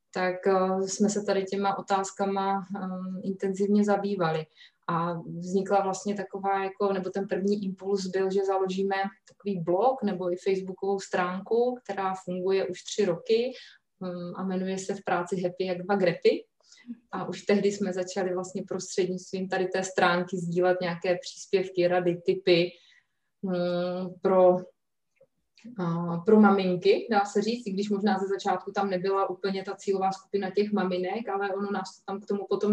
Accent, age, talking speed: native, 20-39, 155 wpm